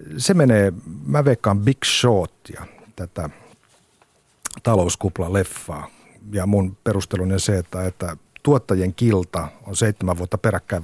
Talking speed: 115 wpm